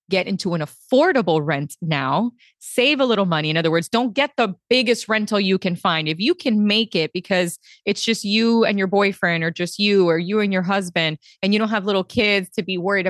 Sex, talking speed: female, 230 wpm